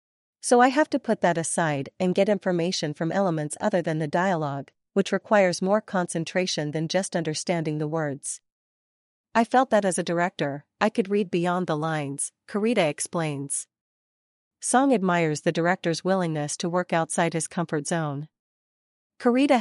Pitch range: 160-200 Hz